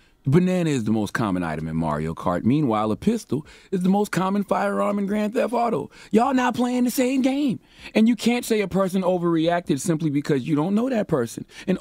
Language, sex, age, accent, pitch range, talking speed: English, male, 30-49, American, 105-160 Hz, 215 wpm